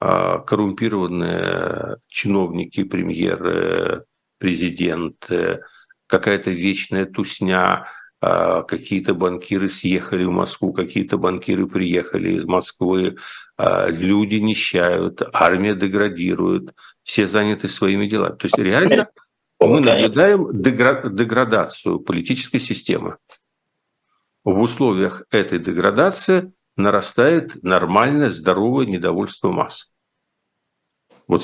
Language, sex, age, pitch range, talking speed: Russian, male, 50-69, 100-145 Hz, 85 wpm